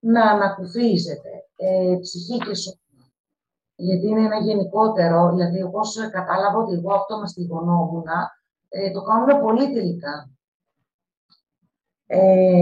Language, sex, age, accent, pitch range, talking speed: Greek, female, 40-59, native, 175-225 Hz, 110 wpm